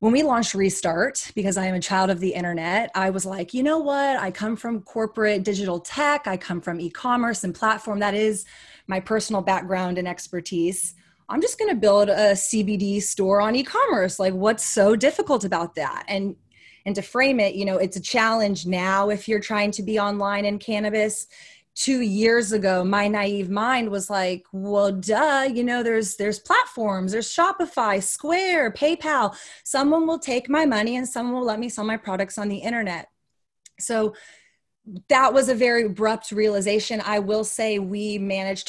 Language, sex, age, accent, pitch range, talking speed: English, female, 20-39, American, 185-225 Hz, 185 wpm